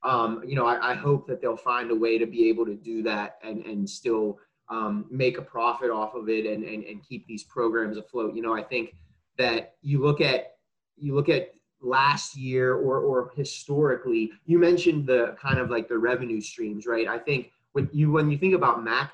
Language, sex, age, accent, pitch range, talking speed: English, male, 20-39, American, 110-140 Hz, 215 wpm